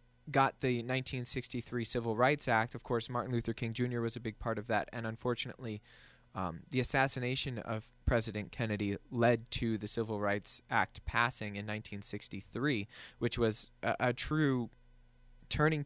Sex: male